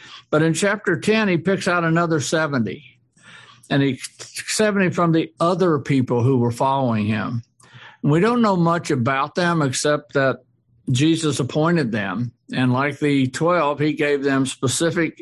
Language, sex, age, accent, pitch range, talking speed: English, male, 60-79, American, 130-170 Hz, 160 wpm